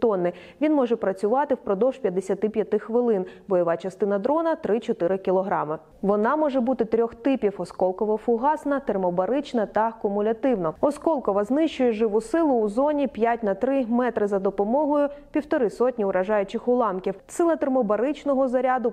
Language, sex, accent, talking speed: Ukrainian, female, native, 135 wpm